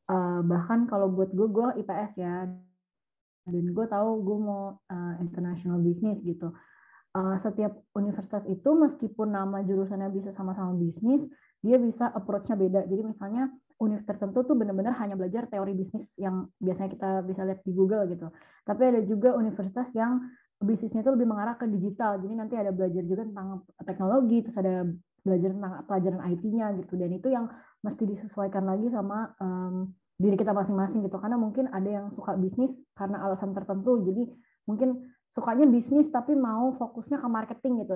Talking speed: 160 wpm